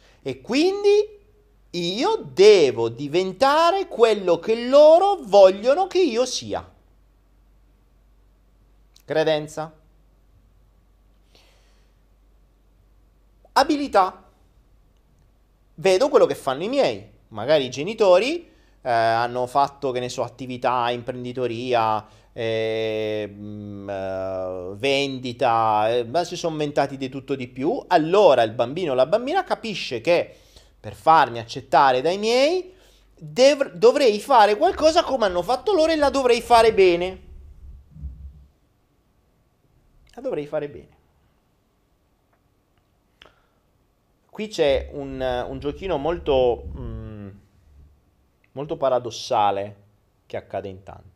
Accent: native